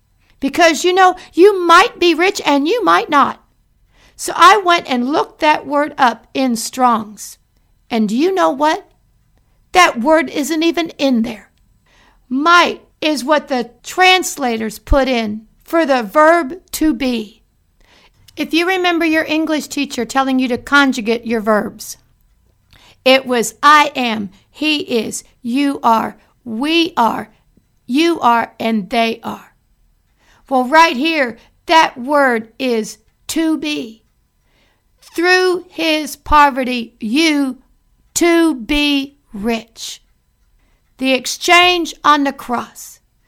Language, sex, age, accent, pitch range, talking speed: English, female, 60-79, American, 235-325 Hz, 125 wpm